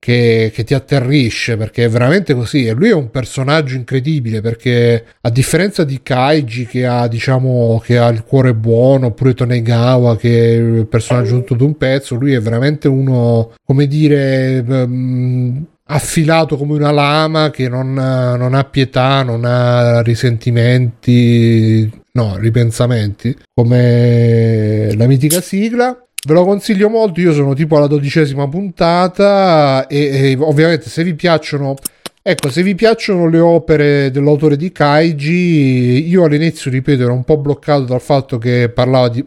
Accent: native